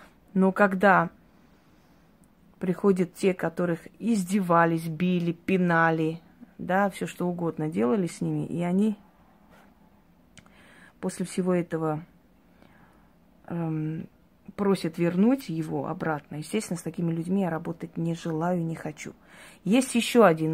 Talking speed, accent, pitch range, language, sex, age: 110 wpm, native, 170-205 Hz, Russian, female, 30-49